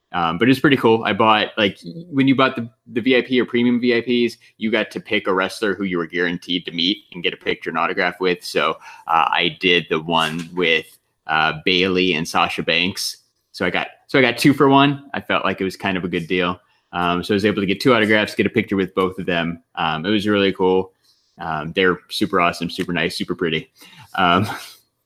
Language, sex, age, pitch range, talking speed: English, male, 20-39, 90-120 Hz, 235 wpm